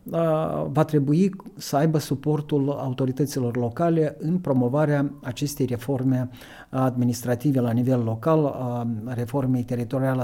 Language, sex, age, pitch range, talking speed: Romanian, male, 50-69, 125-160 Hz, 100 wpm